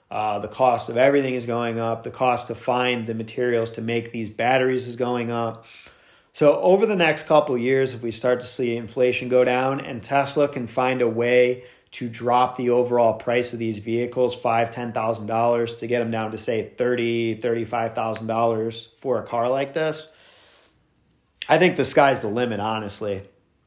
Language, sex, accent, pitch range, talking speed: English, male, American, 110-130 Hz, 190 wpm